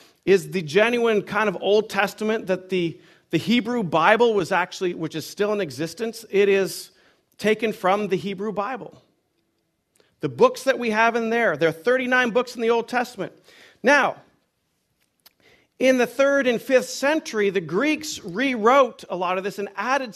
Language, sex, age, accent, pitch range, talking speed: English, male, 40-59, American, 195-250 Hz, 170 wpm